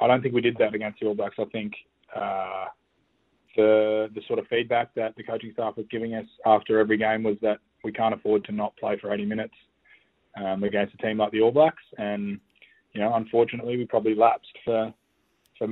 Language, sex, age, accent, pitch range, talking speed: English, male, 20-39, Australian, 105-125 Hz, 215 wpm